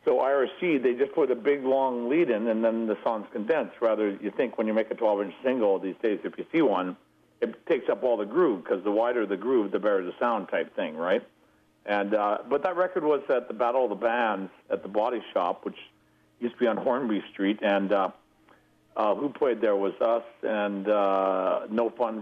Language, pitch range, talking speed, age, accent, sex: English, 100-130 Hz, 225 wpm, 60-79, American, male